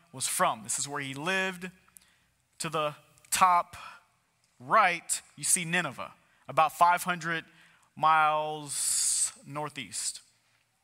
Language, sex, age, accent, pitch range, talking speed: English, male, 30-49, American, 145-180 Hz, 100 wpm